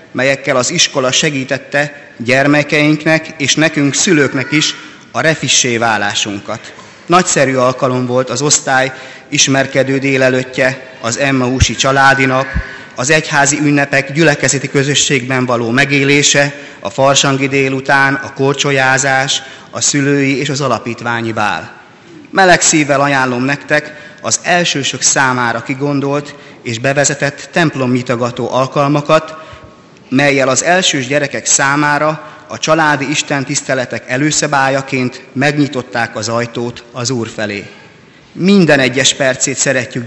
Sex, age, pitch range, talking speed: male, 30-49, 130-150 Hz, 110 wpm